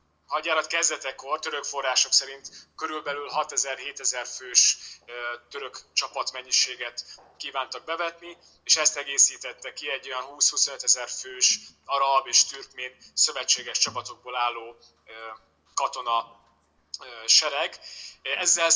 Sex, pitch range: male, 130-155 Hz